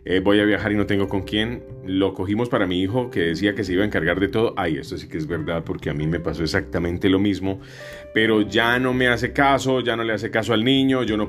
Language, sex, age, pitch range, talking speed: Spanish, male, 30-49, 95-125 Hz, 275 wpm